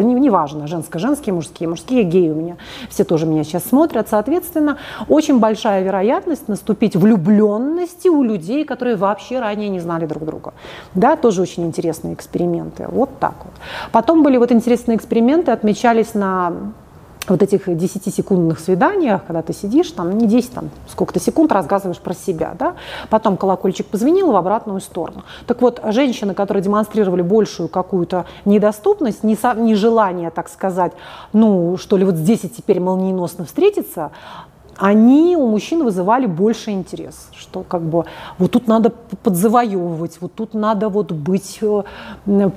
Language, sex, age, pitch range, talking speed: Russian, female, 30-49, 180-230 Hz, 150 wpm